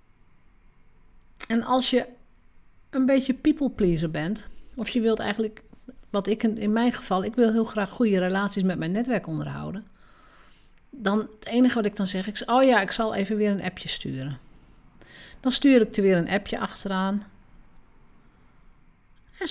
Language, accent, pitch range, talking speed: Dutch, Dutch, 170-235 Hz, 160 wpm